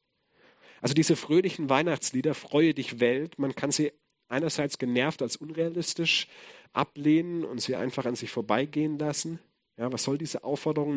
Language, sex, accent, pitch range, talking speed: English, male, German, 125-155 Hz, 140 wpm